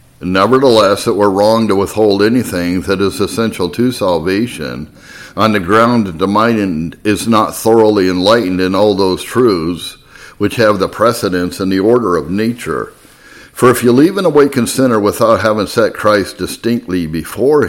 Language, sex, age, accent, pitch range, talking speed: English, male, 60-79, American, 95-115 Hz, 165 wpm